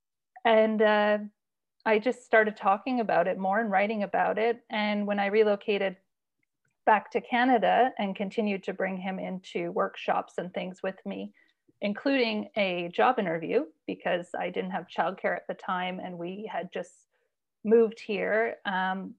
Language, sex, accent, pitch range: English, female, American, 190-225 Hz